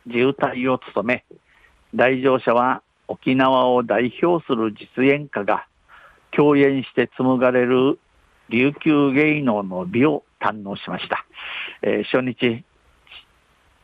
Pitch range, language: 115-130 Hz, Japanese